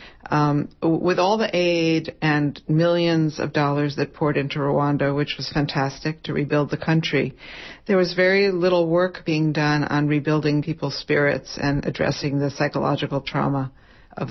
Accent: American